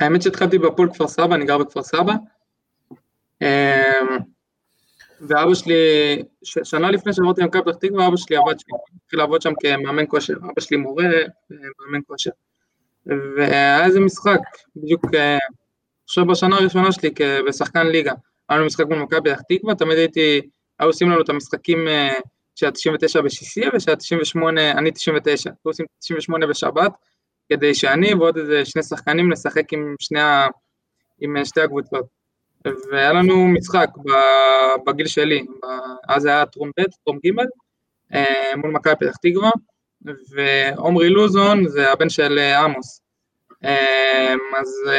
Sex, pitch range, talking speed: male, 140-170 Hz, 135 wpm